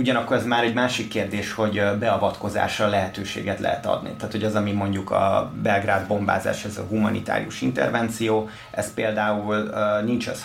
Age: 30-49